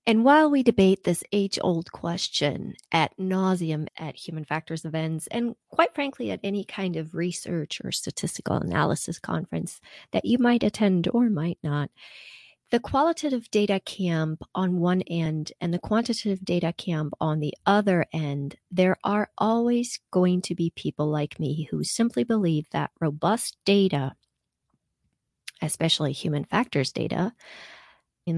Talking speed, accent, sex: 145 wpm, American, female